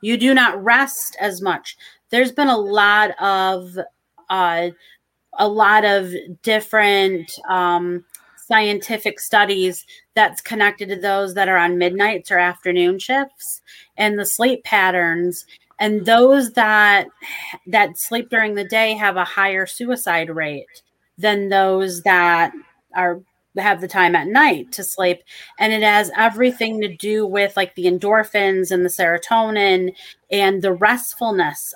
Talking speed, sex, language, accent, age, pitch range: 140 wpm, female, English, American, 30-49, 185-220 Hz